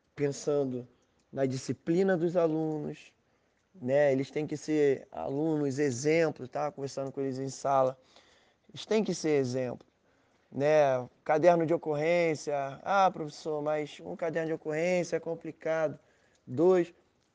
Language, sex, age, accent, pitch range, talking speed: Portuguese, male, 20-39, Brazilian, 140-170 Hz, 130 wpm